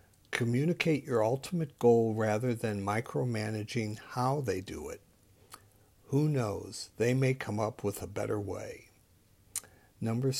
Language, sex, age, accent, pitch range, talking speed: English, male, 60-79, American, 105-130 Hz, 125 wpm